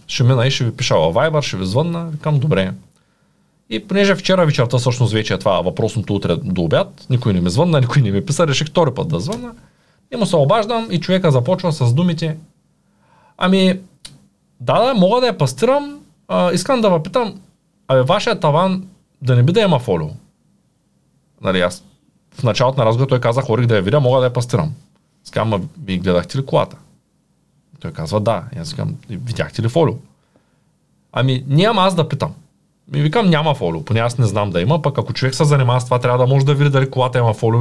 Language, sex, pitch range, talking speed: Bulgarian, male, 120-175 Hz, 195 wpm